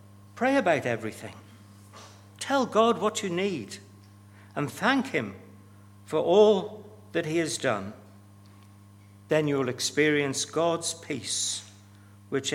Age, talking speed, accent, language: 60-79, 115 wpm, British, English